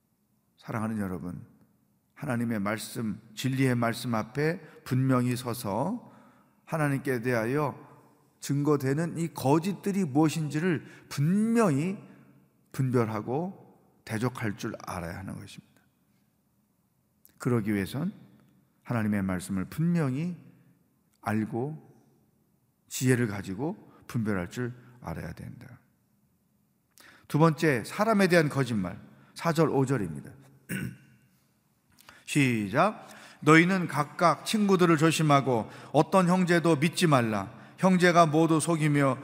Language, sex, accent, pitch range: Korean, male, native, 125-165 Hz